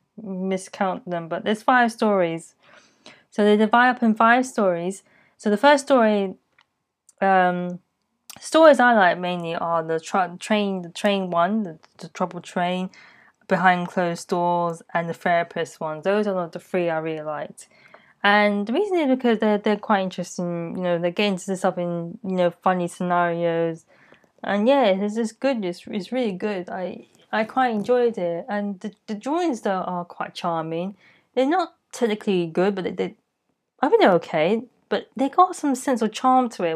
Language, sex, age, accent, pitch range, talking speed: English, female, 20-39, British, 175-225 Hz, 180 wpm